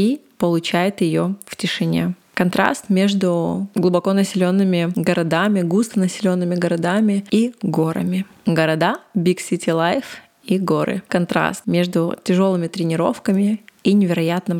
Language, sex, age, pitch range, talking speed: Russian, female, 20-39, 175-200 Hz, 110 wpm